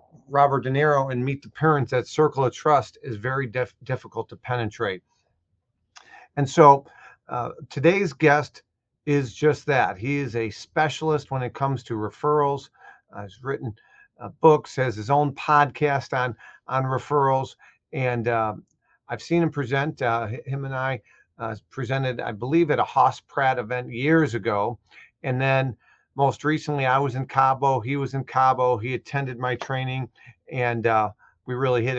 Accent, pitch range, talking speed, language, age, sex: American, 120-145 Hz, 165 wpm, English, 50-69, male